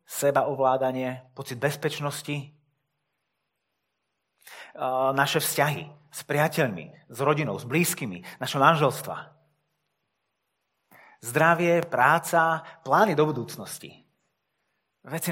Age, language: 30-49, Slovak